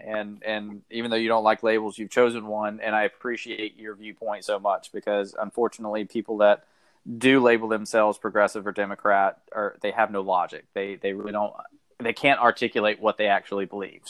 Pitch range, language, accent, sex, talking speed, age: 105-115 Hz, English, American, male, 190 wpm, 20-39